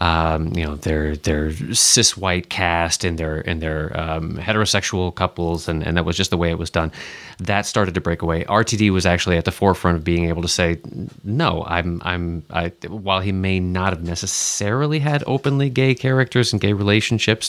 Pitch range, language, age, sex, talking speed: 85-105 Hz, English, 30-49, male, 200 wpm